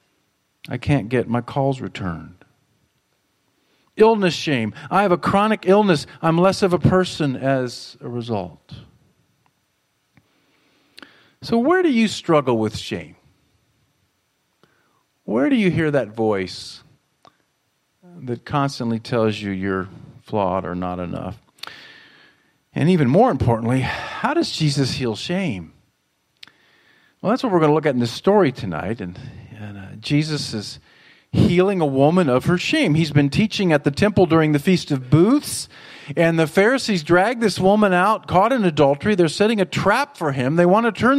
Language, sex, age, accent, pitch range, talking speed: English, male, 50-69, American, 125-200 Hz, 155 wpm